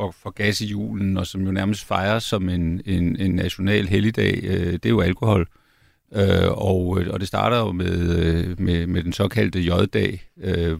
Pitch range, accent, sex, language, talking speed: 90-110 Hz, native, male, Danish, 190 wpm